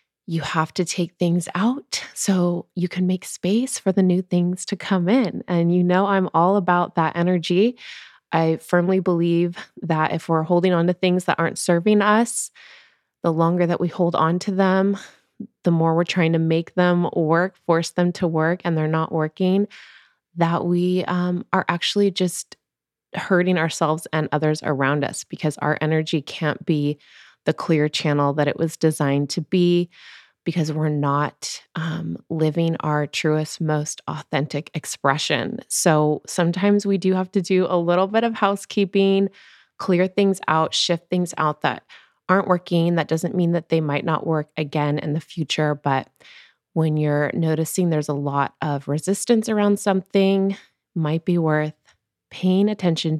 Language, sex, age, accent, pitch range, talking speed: English, female, 20-39, American, 155-185 Hz, 170 wpm